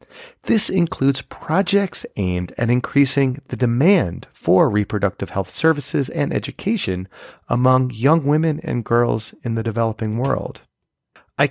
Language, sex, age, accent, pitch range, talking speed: English, male, 30-49, American, 110-150 Hz, 125 wpm